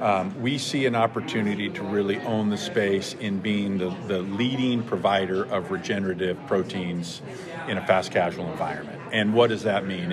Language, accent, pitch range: English, American, 100-125 Hz